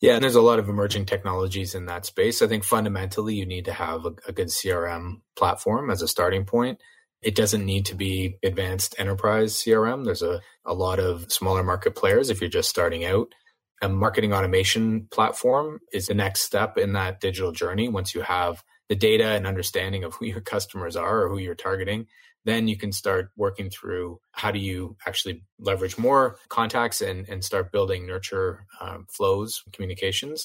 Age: 20-39